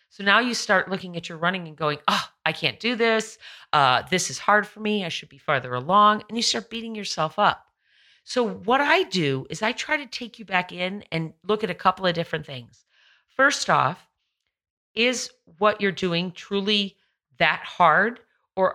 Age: 40-59